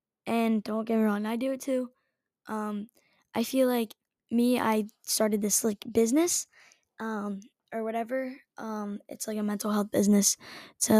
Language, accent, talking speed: English, American, 165 wpm